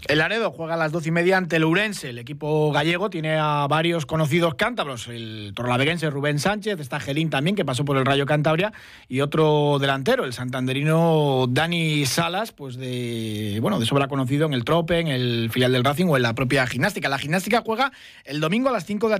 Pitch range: 130-165 Hz